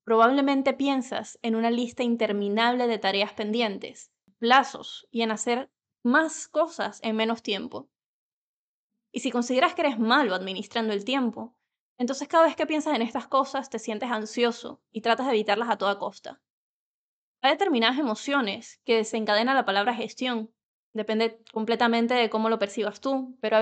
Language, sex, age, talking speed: English, female, 20-39, 160 wpm